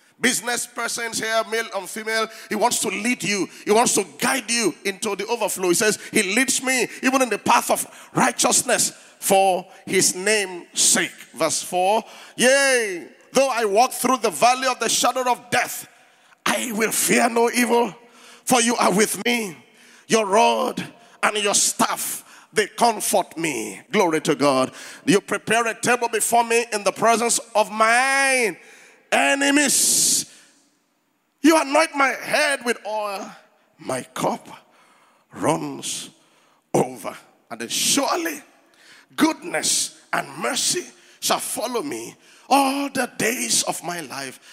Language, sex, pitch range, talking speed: English, male, 200-260 Hz, 145 wpm